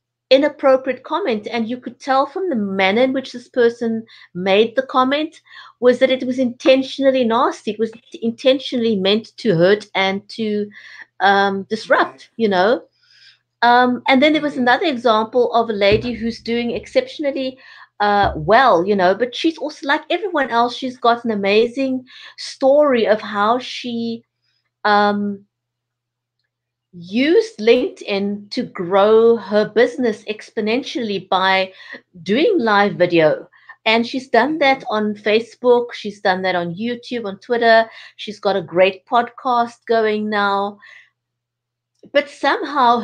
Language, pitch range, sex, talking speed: English, 205-260 Hz, female, 140 wpm